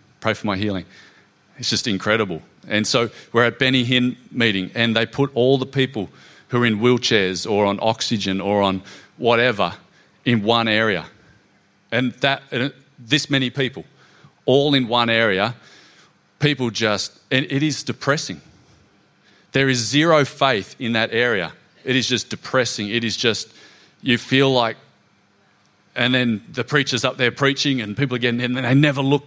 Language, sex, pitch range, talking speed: English, male, 110-135 Hz, 160 wpm